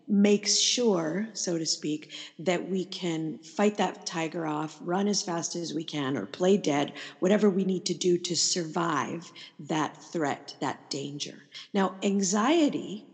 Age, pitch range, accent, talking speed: 50-69, 170-200 Hz, American, 155 wpm